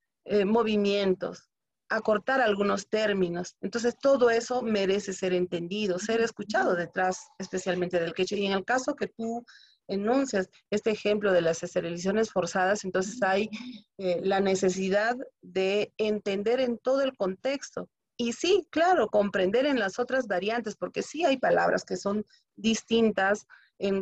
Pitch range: 185-225 Hz